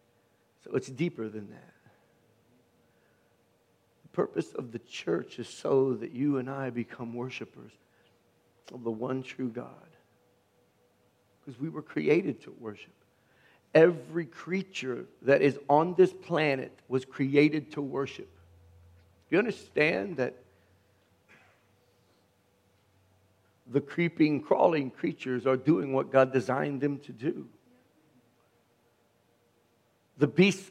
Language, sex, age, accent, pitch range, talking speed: English, male, 50-69, American, 115-150 Hz, 115 wpm